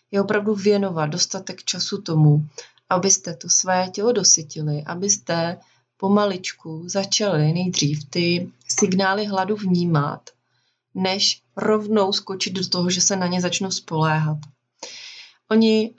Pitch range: 170-205 Hz